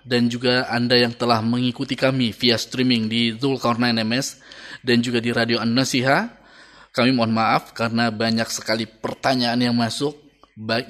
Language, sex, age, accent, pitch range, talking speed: Indonesian, male, 20-39, native, 115-140 Hz, 150 wpm